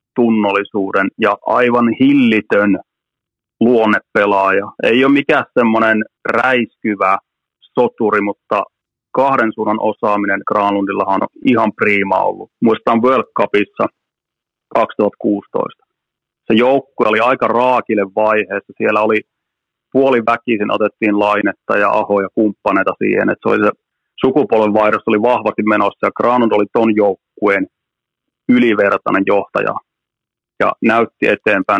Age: 30-49